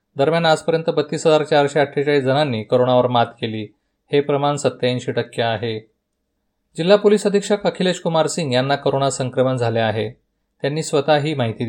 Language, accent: Marathi, native